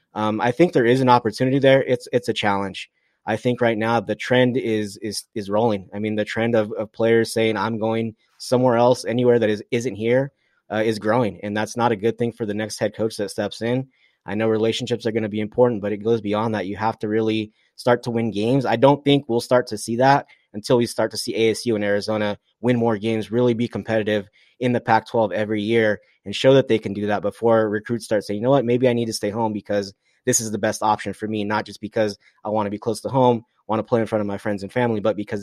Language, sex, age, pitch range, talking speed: English, male, 20-39, 105-120 Hz, 260 wpm